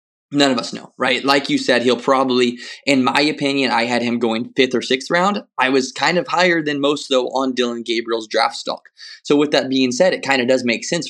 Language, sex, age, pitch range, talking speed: English, male, 20-39, 115-140 Hz, 245 wpm